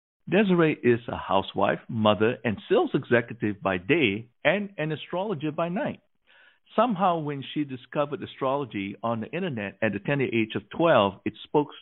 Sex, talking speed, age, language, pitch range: male, 155 wpm, 50-69, English, 105-145 Hz